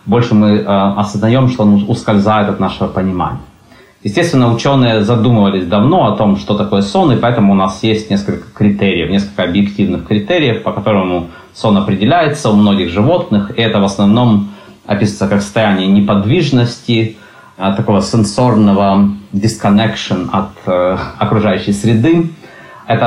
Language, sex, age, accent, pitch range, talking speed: Russian, male, 30-49, native, 95-115 Hz, 130 wpm